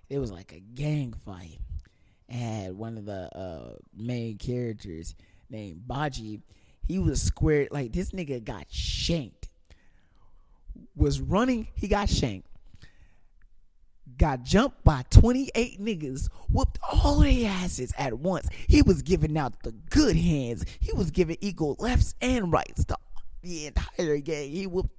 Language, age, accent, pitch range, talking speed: English, 20-39, American, 95-150 Hz, 140 wpm